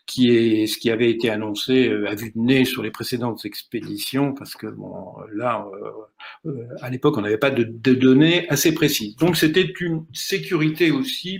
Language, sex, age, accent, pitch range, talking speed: French, male, 50-69, French, 120-150 Hz, 190 wpm